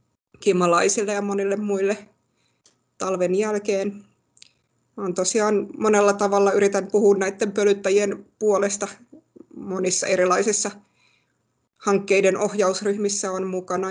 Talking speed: 90 wpm